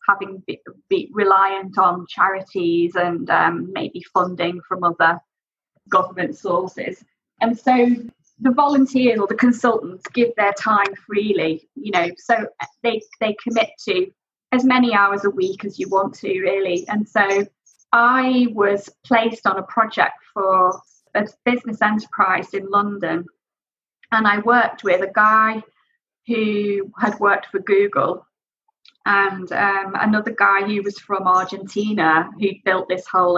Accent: British